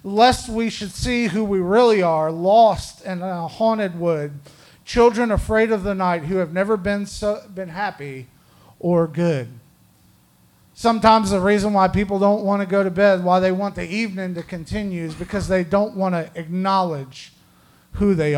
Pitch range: 155-200 Hz